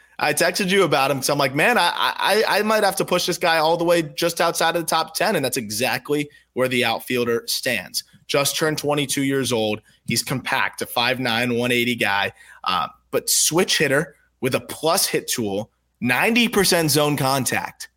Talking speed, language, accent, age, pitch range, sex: 190 wpm, English, American, 20-39, 130-170 Hz, male